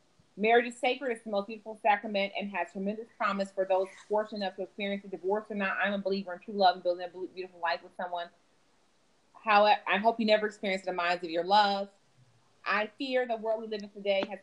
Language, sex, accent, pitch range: English, female, American, 180-220 Hz